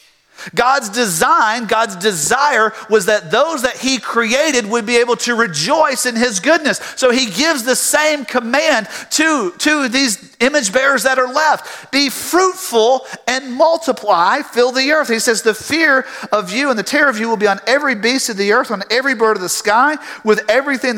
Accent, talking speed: American, 190 wpm